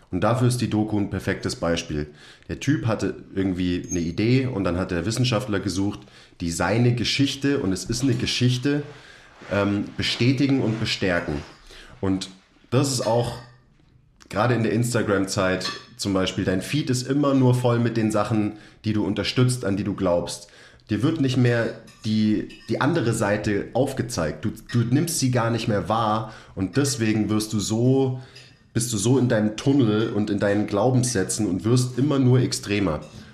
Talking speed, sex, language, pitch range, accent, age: 170 wpm, male, German, 100-125 Hz, German, 30-49